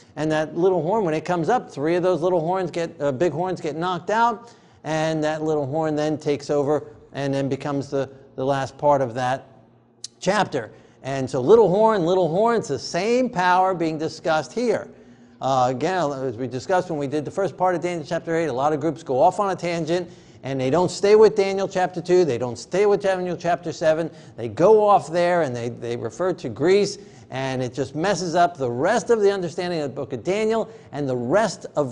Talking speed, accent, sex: 220 wpm, American, male